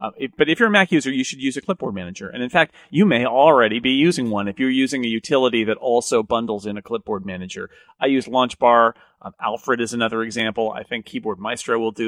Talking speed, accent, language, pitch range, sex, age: 245 wpm, American, English, 125-160 Hz, male, 40-59